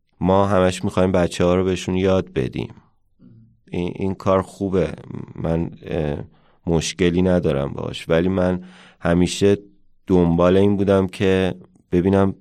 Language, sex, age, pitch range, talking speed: Persian, male, 30-49, 80-95 Hz, 120 wpm